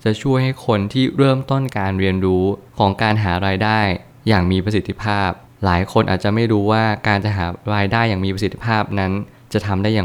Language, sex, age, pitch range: Thai, male, 20-39, 95-115 Hz